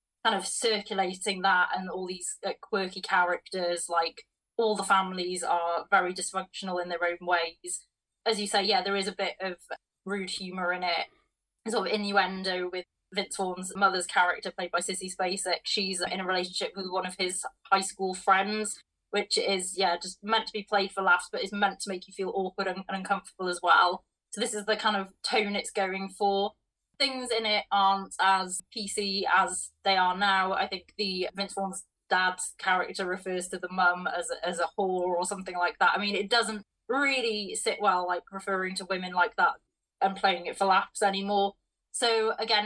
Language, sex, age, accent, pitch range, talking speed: English, female, 20-39, British, 185-205 Hz, 200 wpm